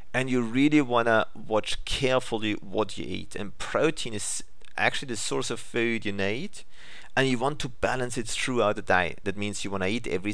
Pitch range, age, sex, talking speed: 105-130 Hz, 40-59, male, 210 wpm